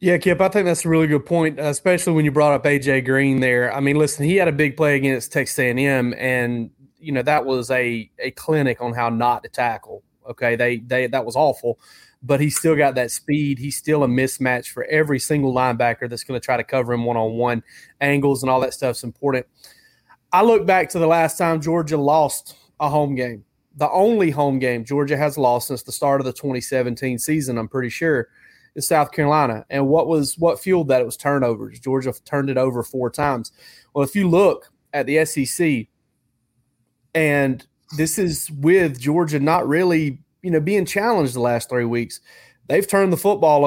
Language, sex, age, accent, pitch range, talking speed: English, male, 30-49, American, 125-155 Hz, 205 wpm